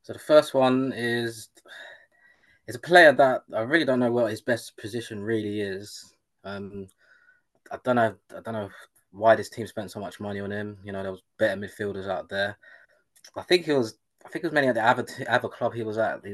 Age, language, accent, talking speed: 20-39, English, British, 220 wpm